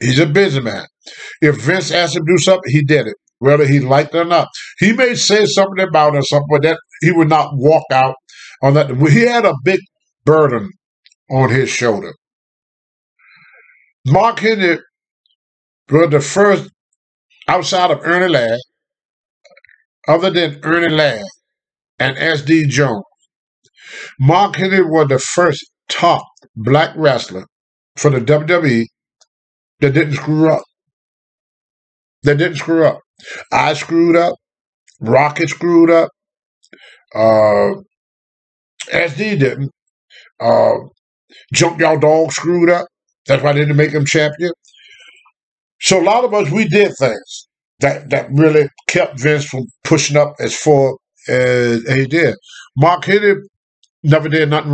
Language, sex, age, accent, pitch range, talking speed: English, male, 50-69, American, 140-175 Hz, 140 wpm